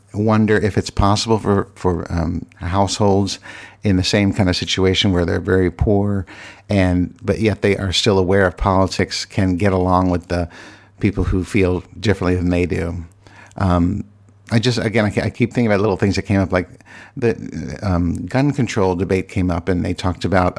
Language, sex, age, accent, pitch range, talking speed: English, male, 50-69, American, 90-105 Hz, 190 wpm